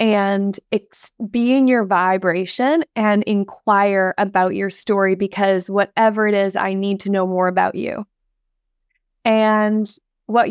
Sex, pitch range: female, 200-225 Hz